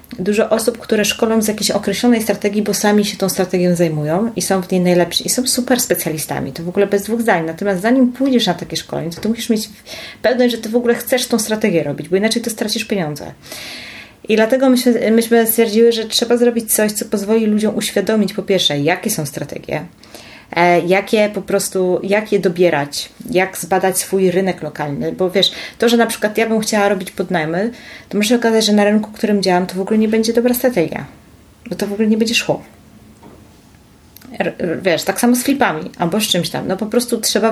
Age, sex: 30-49, female